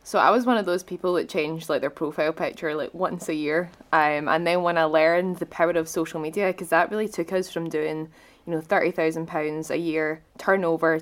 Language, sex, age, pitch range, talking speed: English, female, 20-39, 160-190 Hz, 235 wpm